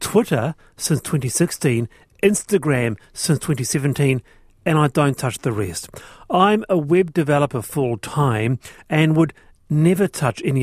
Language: English